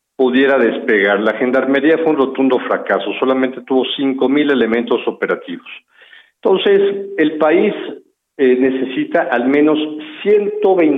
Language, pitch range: Spanish, 130-160 Hz